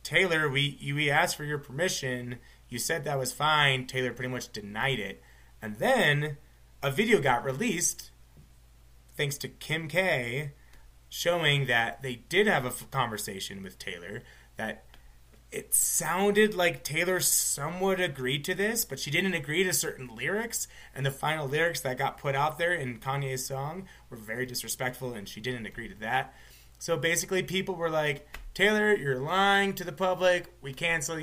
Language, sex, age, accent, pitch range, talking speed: English, male, 30-49, American, 125-160 Hz, 165 wpm